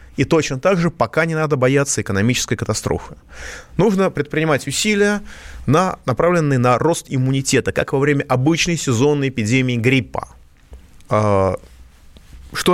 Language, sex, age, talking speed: Russian, male, 30-49, 120 wpm